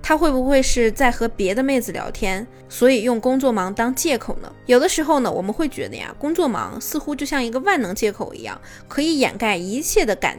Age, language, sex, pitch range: 20-39, Chinese, female, 215-280 Hz